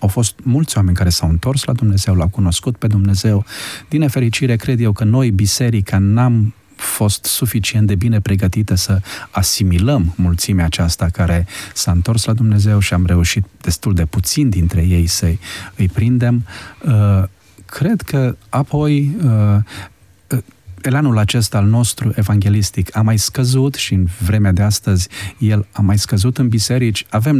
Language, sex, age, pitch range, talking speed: Romanian, male, 40-59, 95-120 Hz, 150 wpm